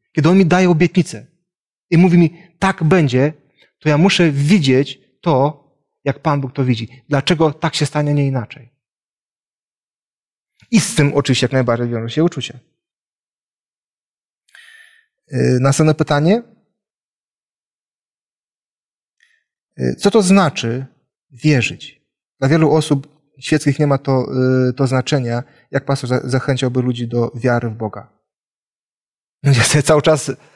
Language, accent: Polish, native